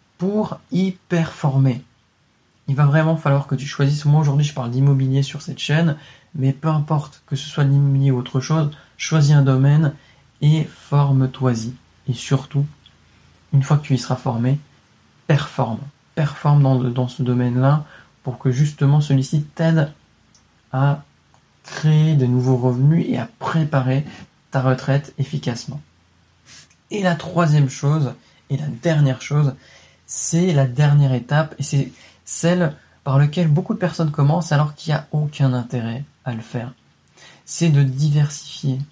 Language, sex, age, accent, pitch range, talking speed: French, male, 20-39, French, 135-155 Hz, 150 wpm